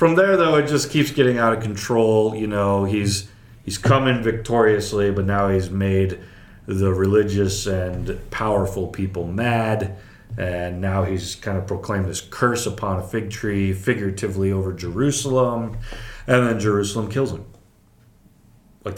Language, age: English, 30-49